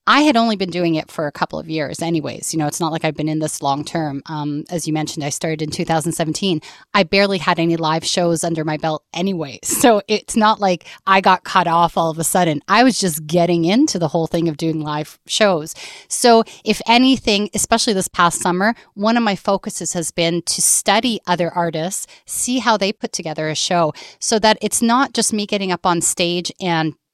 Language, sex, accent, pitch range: English, female, American, 165-210 Hz